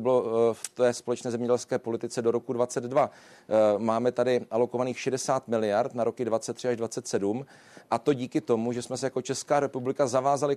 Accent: native